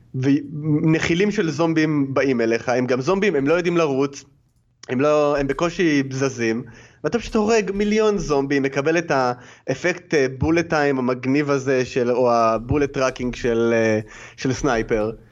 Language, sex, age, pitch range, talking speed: Hebrew, male, 20-39, 125-165 Hz, 135 wpm